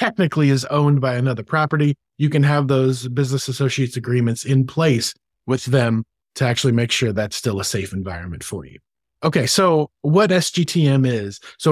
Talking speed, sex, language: 175 wpm, male, English